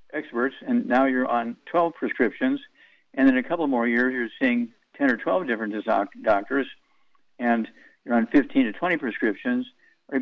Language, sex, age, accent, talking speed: English, male, 60-79, American, 165 wpm